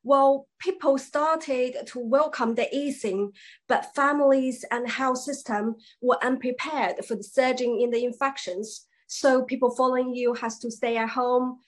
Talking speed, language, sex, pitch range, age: 150 wpm, English, female, 220-265 Hz, 20-39